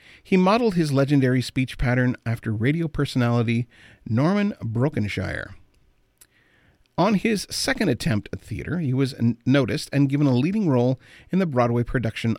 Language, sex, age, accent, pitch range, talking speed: English, male, 40-59, American, 115-155 Hz, 140 wpm